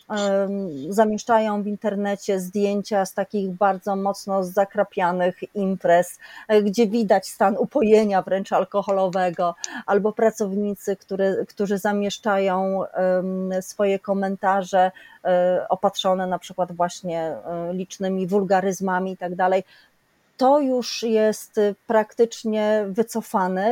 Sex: female